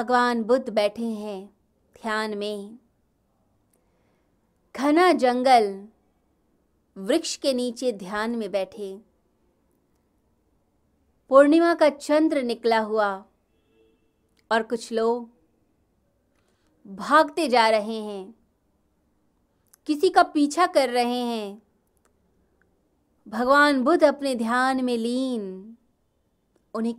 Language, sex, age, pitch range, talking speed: Hindi, female, 20-39, 210-280 Hz, 85 wpm